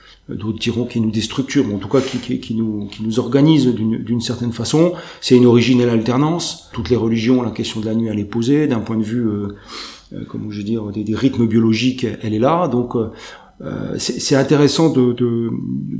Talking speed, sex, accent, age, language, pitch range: 220 wpm, male, French, 40-59, French, 115-145 Hz